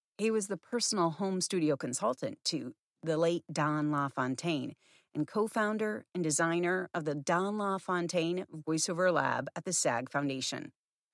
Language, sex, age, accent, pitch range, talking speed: English, female, 40-59, American, 160-215 Hz, 140 wpm